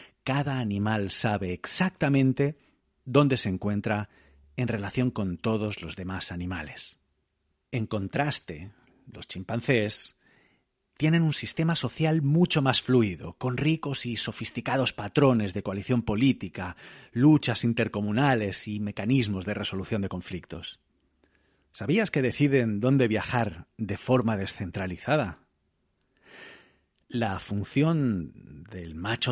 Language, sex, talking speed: Spanish, male, 110 wpm